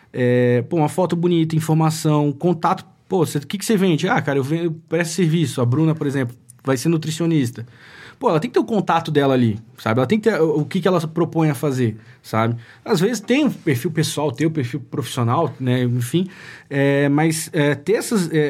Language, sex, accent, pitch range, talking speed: Portuguese, male, Brazilian, 135-185 Hz, 220 wpm